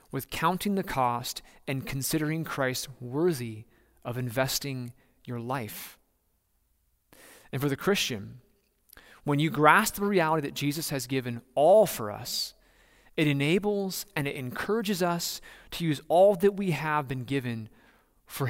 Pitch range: 120-160 Hz